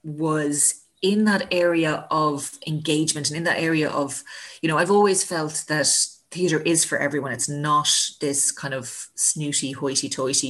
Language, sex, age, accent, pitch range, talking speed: English, female, 30-49, Irish, 145-185 Hz, 160 wpm